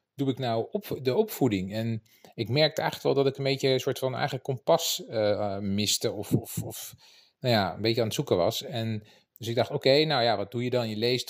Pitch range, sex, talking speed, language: 105-125 Hz, male, 250 wpm, Dutch